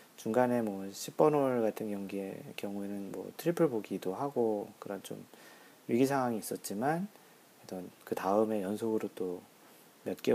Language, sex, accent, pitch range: Korean, male, native, 100-130 Hz